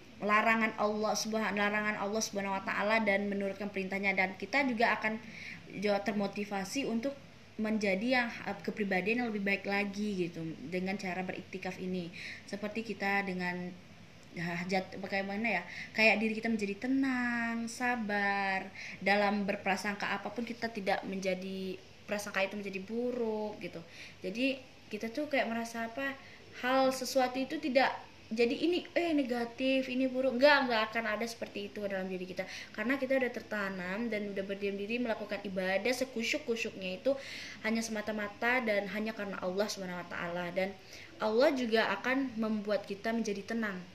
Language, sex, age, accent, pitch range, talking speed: Indonesian, female, 20-39, native, 195-230 Hz, 145 wpm